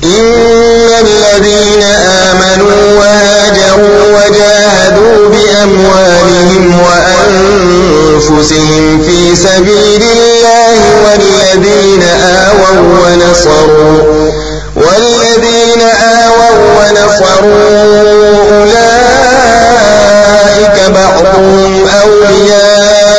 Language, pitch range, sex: Arabic, 190-210 Hz, male